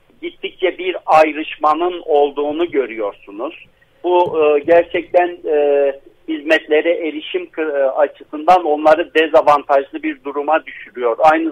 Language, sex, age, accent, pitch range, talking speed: Turkish, male, 50-69, native, 145-180 Hz, 85 wpm